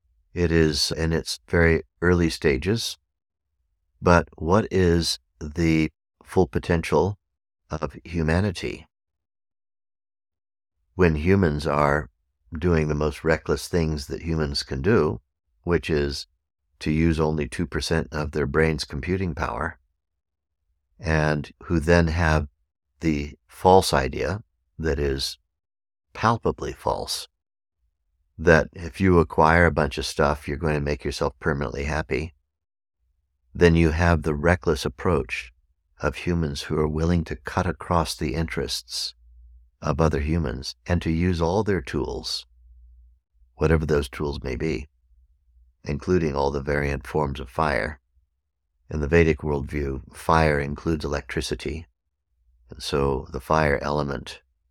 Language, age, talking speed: English, 60-79, 125 wpm